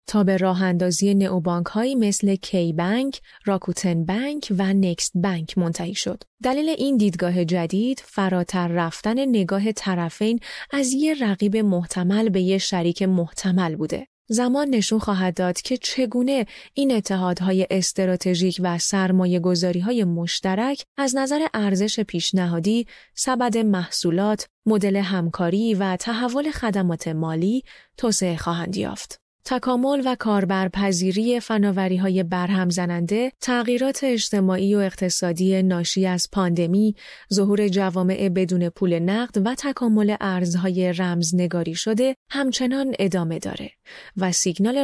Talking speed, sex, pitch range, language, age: 120 wpm, female, 180-225 Hz, Persian, 30-49